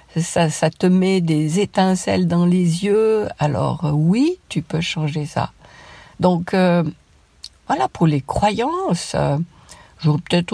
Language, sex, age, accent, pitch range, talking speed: French, female, 50-69, French, 145-185 Hz, 130 wpm